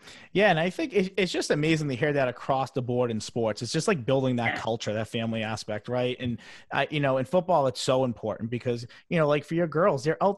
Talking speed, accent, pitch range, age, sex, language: 250 wpm, American, 125-160 Hz, 30-49, male, English